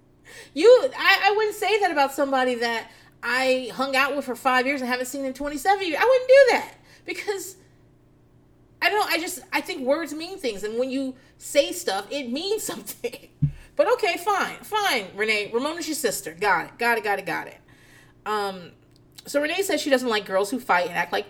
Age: 30-49